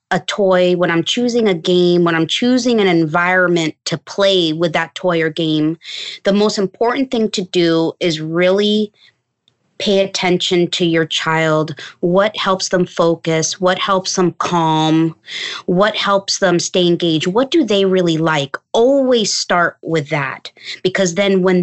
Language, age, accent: English, 20-39, American